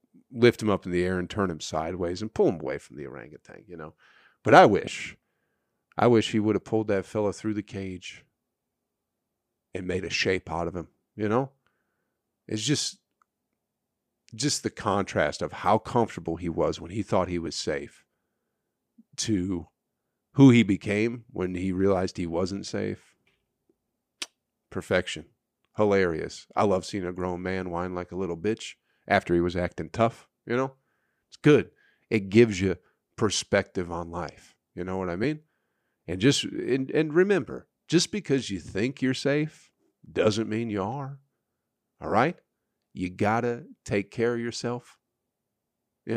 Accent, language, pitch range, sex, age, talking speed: American, English, 90-120 Hz, male, 40-59, 165 wpm